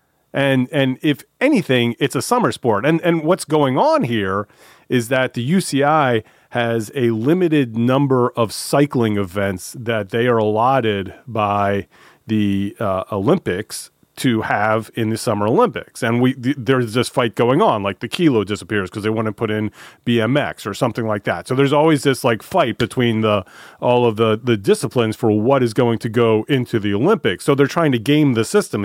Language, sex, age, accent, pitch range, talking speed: English, male, 30-49, American, 105-140 Hz, 190 wpm